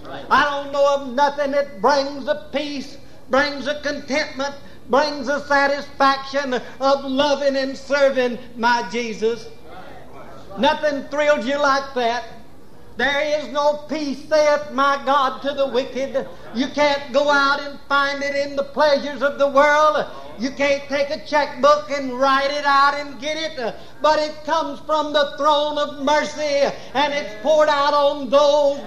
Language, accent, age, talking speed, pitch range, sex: English, American, 60-79, 155 wpm, 260-290 Hz, male